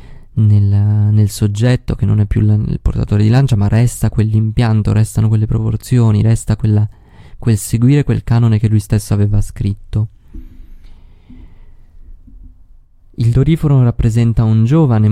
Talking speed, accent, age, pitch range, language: 125 wpm, native, 20-39, 105-115 Hz, Italian